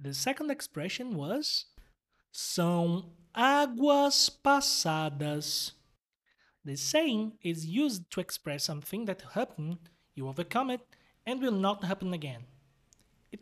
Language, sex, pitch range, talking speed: Portuguese, male, 155-240 Hz, 110 wpm